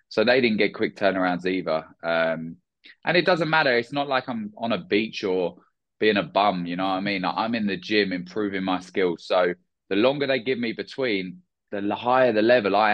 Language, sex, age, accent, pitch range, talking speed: English, male, 20-39, British, 90-105 Hz, 220 wpm